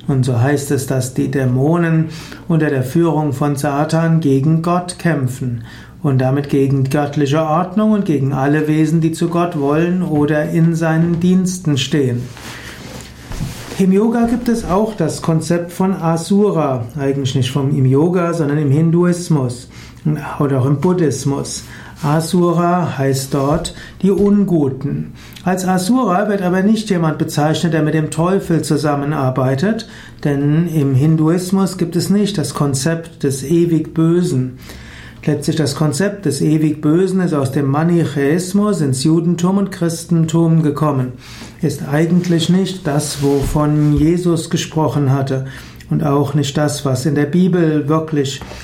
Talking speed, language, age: 140 wpm, German, 60-79